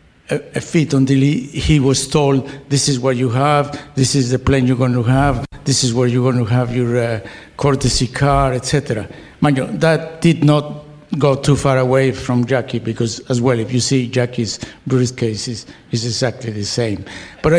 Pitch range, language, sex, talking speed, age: 130-150 Hz, English, male, 195 wpm, 60-79